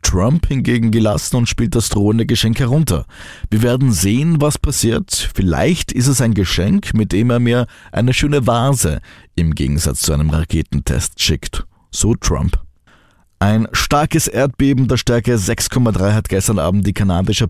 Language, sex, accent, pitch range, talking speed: German, male, Austrian, 90-120 Hz, 155 wpm